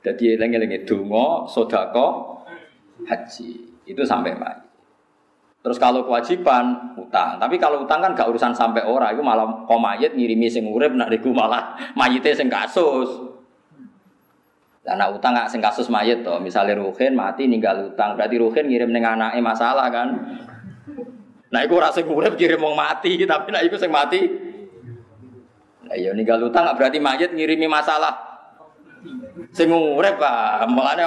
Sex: male